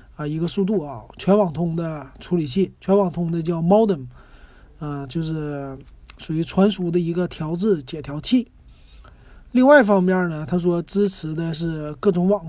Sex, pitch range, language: male, 160-200 Hz, Chinese